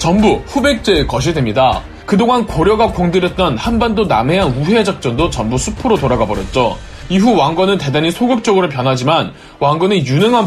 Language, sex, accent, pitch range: Korean, male, native, 145-215 Hz